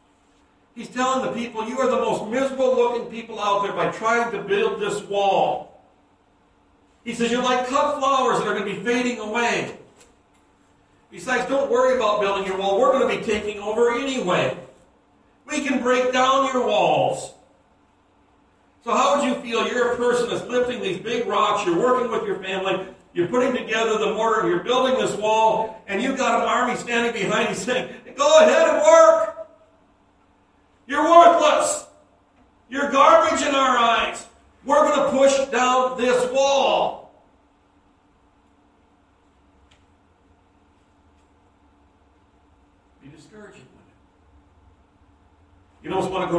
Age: 60-79